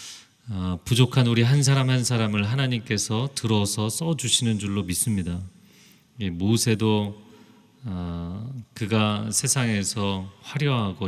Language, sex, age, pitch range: Korean, male, 30-49, 95-120 Hz